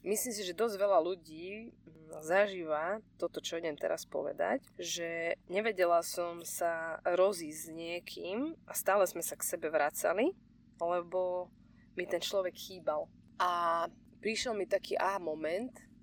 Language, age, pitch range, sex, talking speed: Slovak, 20-39, 170-200 Hz, female, 140 wpm